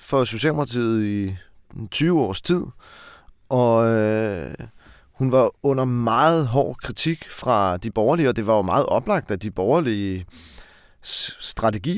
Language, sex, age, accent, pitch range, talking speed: Danish, male, 30-49, native, 105-130 Hz, 135 wpm